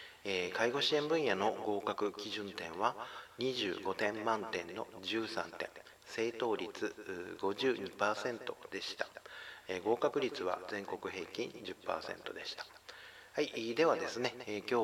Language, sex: Japanese, male